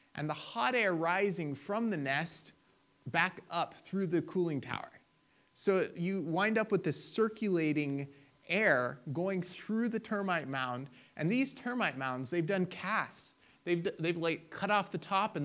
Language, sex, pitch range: English, male, 140-185 Hz